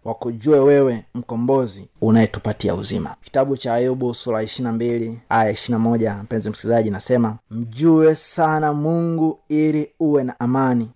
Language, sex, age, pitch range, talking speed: Swahili, male, 30-49, 120-155 Hz, 120 wpm